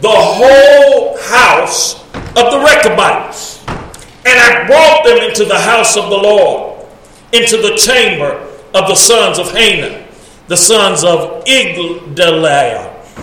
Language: English